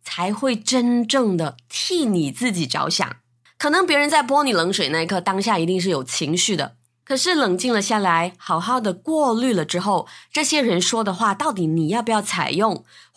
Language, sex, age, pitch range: Chinese, female, 20-39, 170-250 Hz